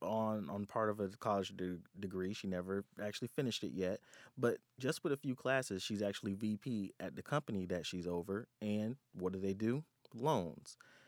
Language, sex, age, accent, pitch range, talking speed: English, male, 30-49, American, 95-125 Hz, 185 wpm